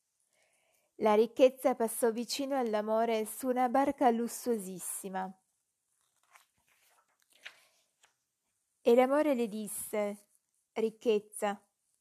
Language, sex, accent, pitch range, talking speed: Italian, female, native, 200-245 Hz, 70 wpm